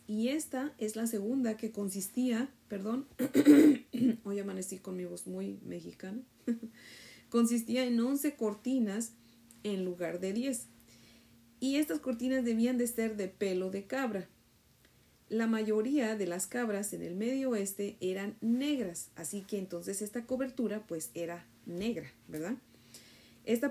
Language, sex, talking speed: Spanish, female, 135 wpm